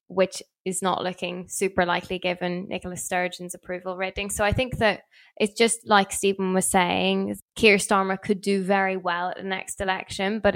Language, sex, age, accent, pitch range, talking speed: English, female, 10-29, British, 190-210 Hz, 180 wpm